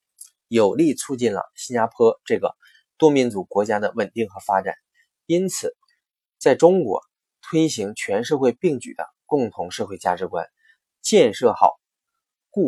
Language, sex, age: Chinese, male, 20-39